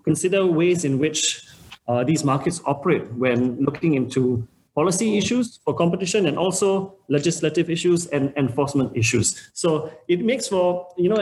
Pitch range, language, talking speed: 125-165 Hz, English, 150 wpm